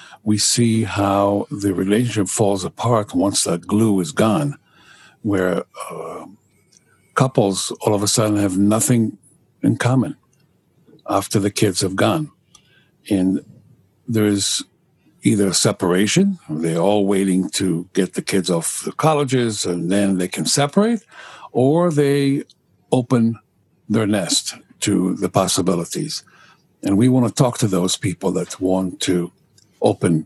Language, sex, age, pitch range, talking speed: English, male, 60-79, 100-130 Hz, 135 wpm